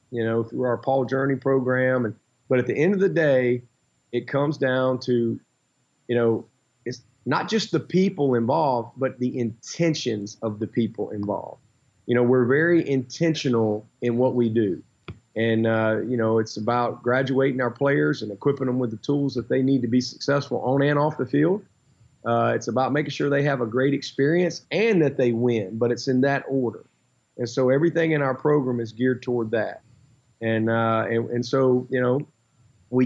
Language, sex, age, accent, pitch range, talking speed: English, male, 30-49, American, 115-140 Hz, 190 wpm